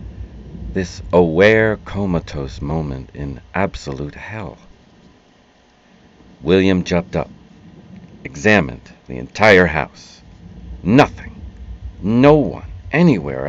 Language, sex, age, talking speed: English, male, 50-69, 80 wpm